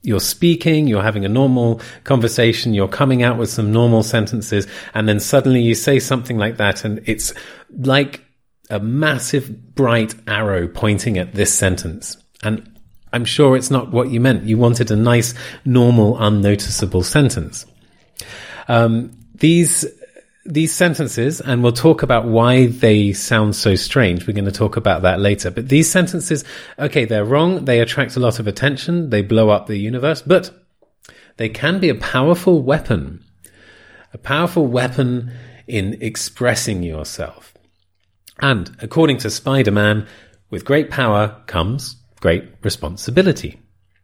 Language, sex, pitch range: English, male, 105-135 Hz